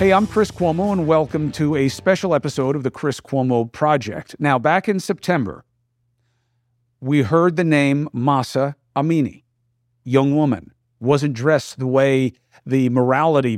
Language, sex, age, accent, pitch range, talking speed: English, male, 50-69, American, 120-145 Hz, 145 wpm